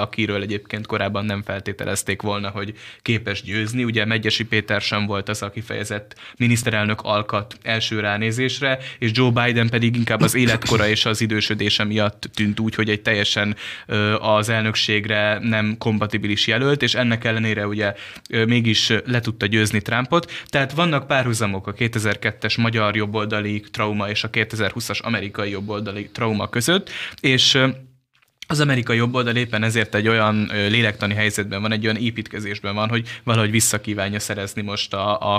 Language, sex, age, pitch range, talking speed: Hungarian, male, 20-39, 105-115 Hz, 150 wpm